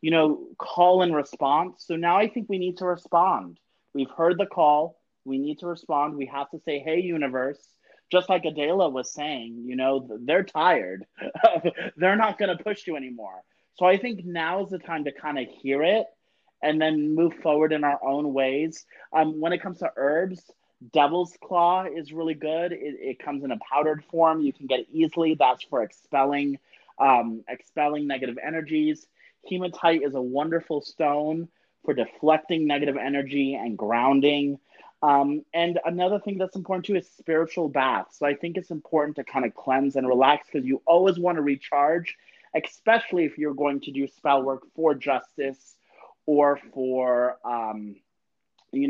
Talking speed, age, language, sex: 175 wpm, 30-49, English, male